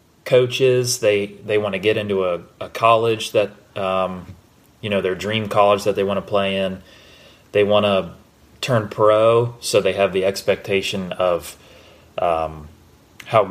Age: 30-49